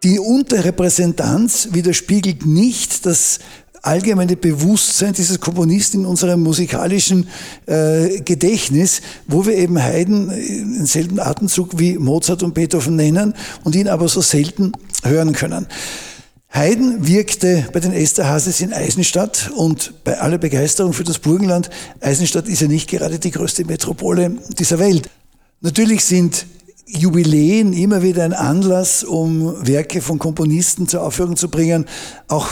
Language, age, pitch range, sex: German, 60-79, 155-185 Hz, male